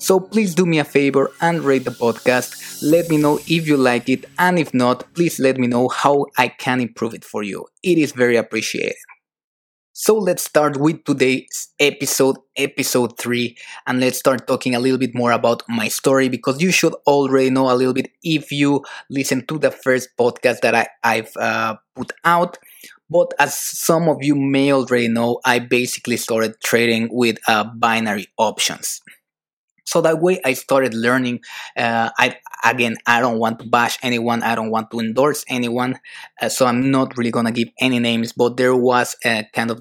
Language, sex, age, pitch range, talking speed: English, male, 20-39, 120-140 Hz, 190 wpm